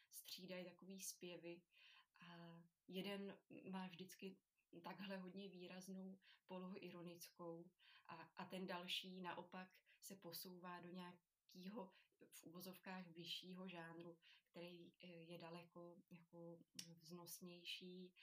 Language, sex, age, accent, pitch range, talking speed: Czech, female, 20-39, native, 175-190 Hz, 100 wpm